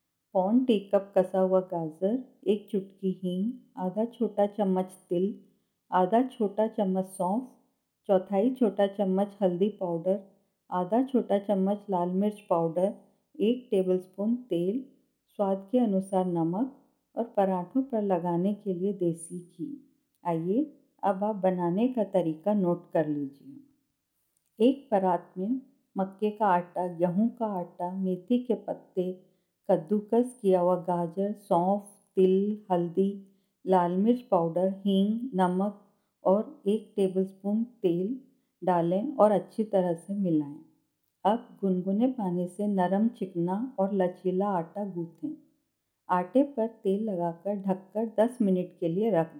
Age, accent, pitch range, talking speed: 50-69, native, 185-220 Hz, 130 wpm